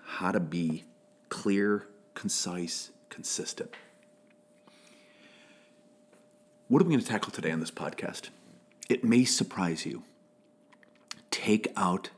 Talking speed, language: 110 wpm, English